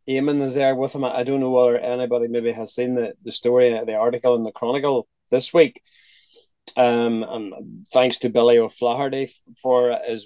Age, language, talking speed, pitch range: 30-49, English, 180 wpm, 115-140 Hz